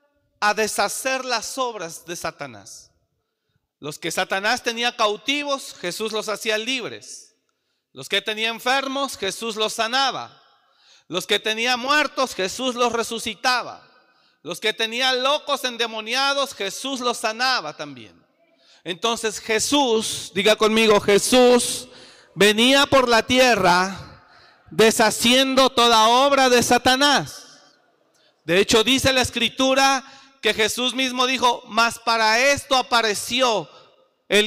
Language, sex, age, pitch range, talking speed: Spanish, male, 40-59, 215-260 Hz, 115 wpm